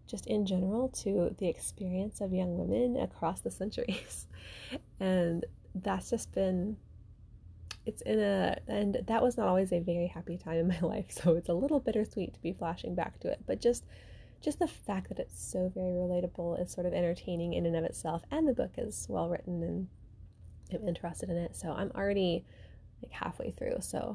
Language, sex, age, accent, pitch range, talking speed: English, female, 20-39, American, 170-220 Hz, 195 wpm